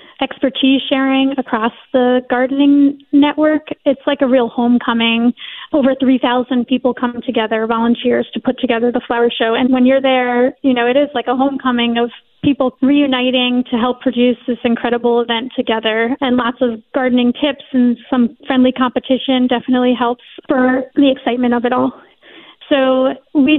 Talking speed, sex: 160 wpm, female